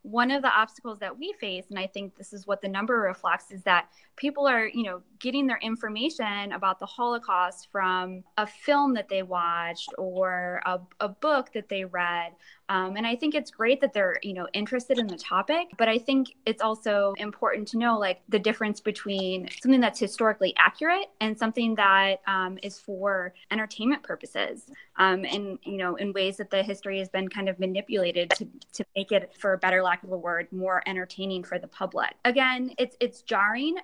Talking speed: 200 wpm